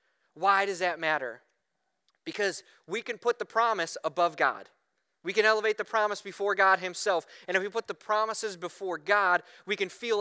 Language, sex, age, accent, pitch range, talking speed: English, male, 20-39, American, 150-200 Hz, 180 wpm